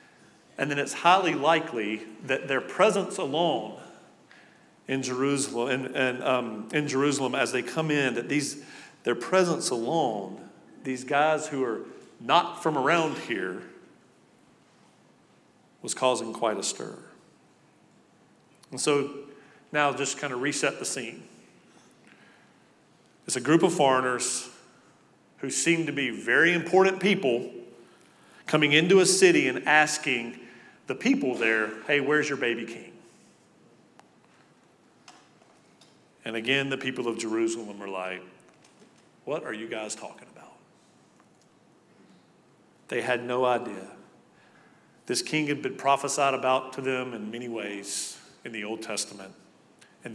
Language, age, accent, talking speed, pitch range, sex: English, 40-59, American, 130 wpm, 115-145 Hz, male